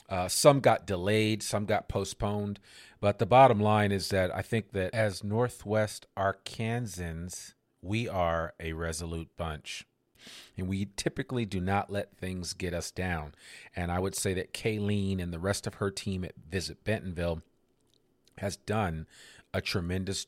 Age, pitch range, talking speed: 40-59, 90-105 Hz, 155 wpm